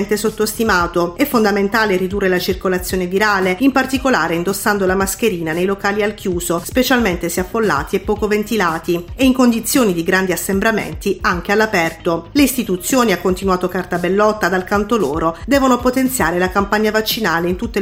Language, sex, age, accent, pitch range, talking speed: Italian, female, 40-59, native, 180-225 Hz, 155 wpm